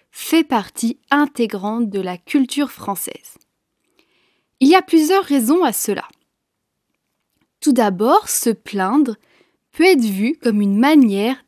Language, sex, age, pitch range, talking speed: French, female, 20-39, 215-290 Hz, 125 wpm